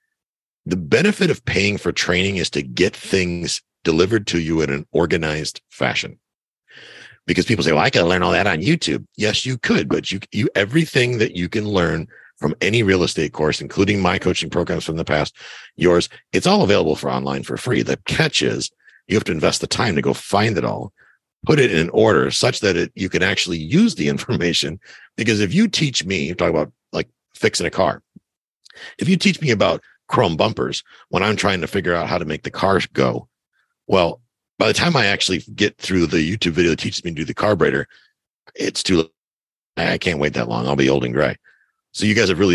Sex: male